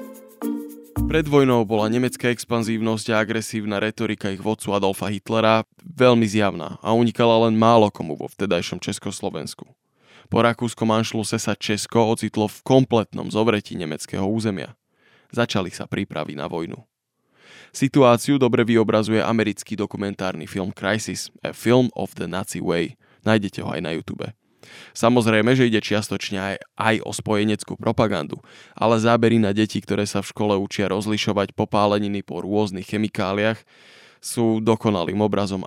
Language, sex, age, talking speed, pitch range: Slovak, male, 20-39, 140 wpm, 100-115 Hz